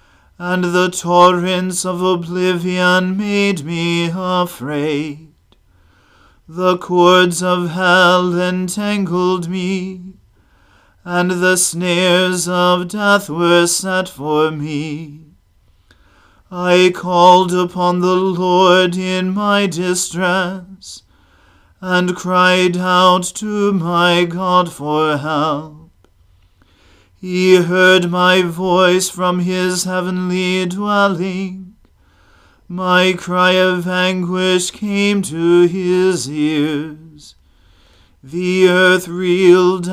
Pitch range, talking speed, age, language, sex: 160-185 Hz, 85 wpm, 40-59, English, male